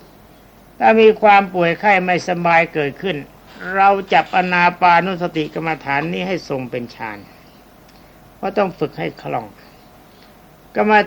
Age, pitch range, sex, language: 60-79, 145-185 Hz, male, Thai